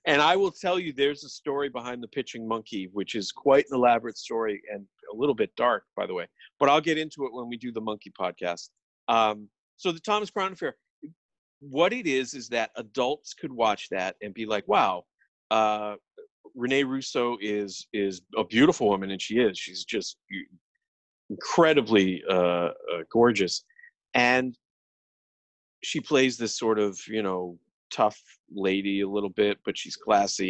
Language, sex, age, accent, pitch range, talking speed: English, male, 40-59, American, 100-130 Hz, 175 wpm